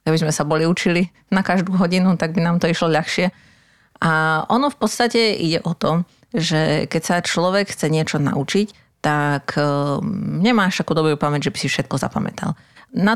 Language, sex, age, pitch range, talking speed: Slovak, female, 30-49, 155-190 Hz, 180 wpm